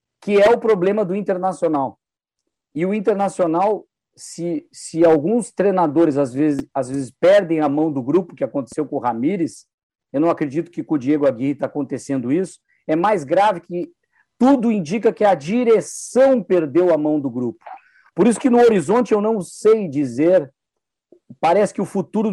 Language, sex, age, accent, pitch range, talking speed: Portuguese, male, 50-69, Brazilian, 150-205 Hz, 170 wpm